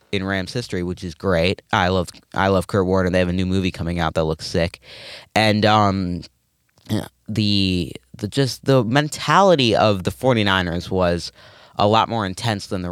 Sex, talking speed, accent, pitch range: male, 180 wpm, American, 95-120 Hz